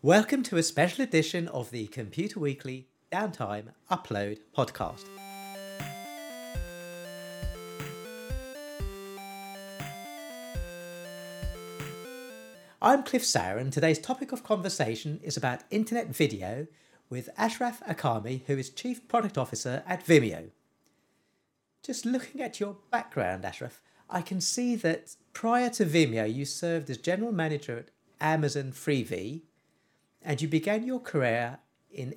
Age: 40-59